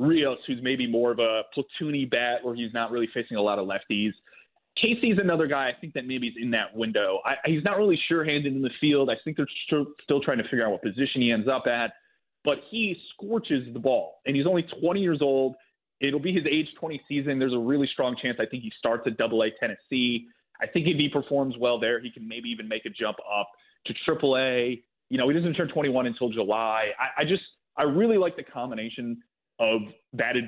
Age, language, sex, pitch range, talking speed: 30-49, English, male, 115-150 Hz, 230 wpm